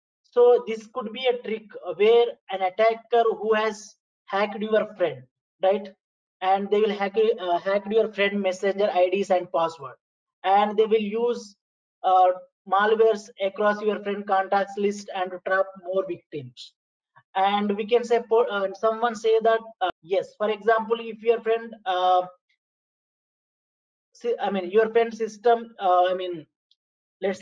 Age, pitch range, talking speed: 20-39, 185-225 Hz, 150 wpm